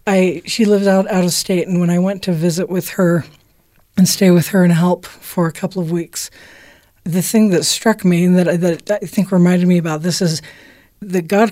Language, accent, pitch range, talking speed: English, American, 165-195 Hz, 220 wpm